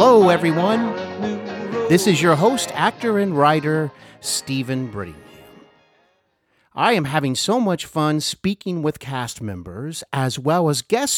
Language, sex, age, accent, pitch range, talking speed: English, male, 50-69, American, 120-175 Hz, 135 wpm